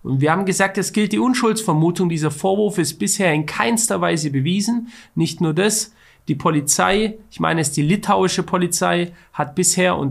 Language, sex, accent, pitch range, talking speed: German, male, German, 155-205 Hz, 180 wpm